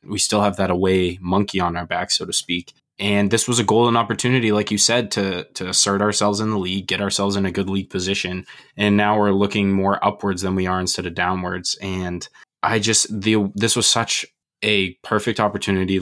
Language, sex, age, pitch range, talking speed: English, male, 20-39, 95-105 Hz, 215 wpm